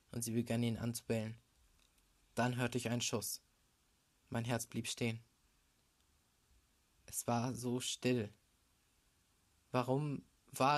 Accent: German